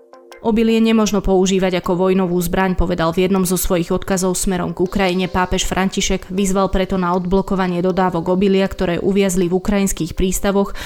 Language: Slovak